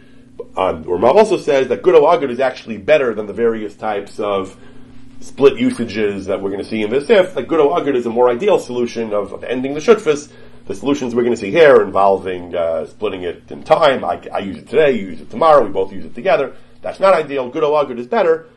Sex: male